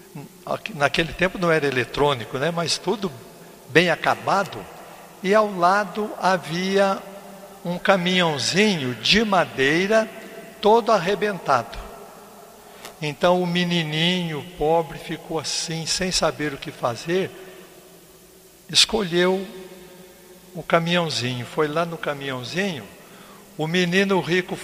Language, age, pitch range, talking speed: Portuguese, 60-79, 160-205 Hz, 100 wpm